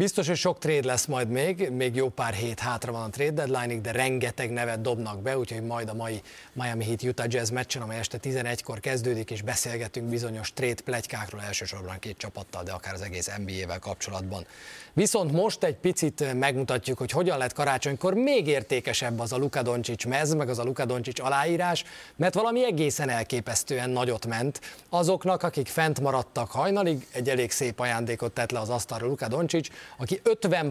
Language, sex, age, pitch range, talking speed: Hungarian, male, 30-49, 120-150 Hz, 175 wpm